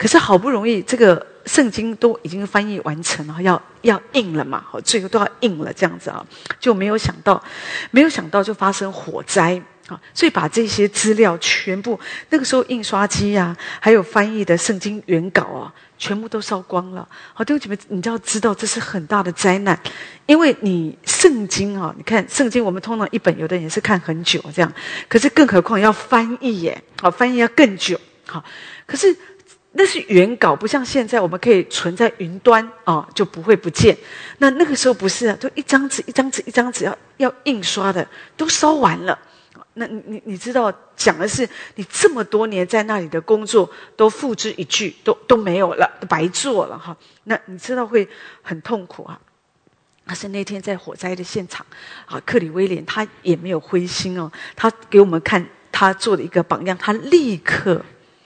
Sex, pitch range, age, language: female, 185-235 Hz, 40-59, English